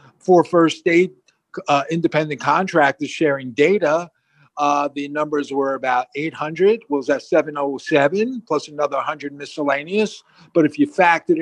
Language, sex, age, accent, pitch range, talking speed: English, male, 50-69, American, 140-165 Hz, 130 wpm